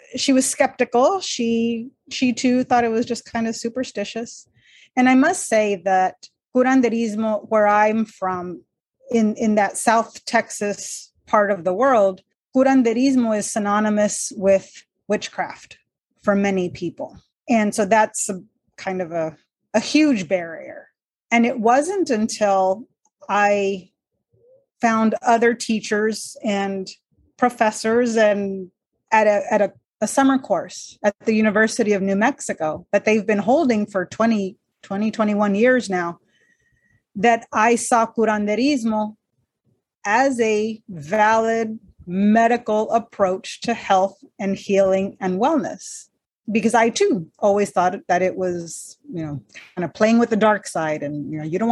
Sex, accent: female, American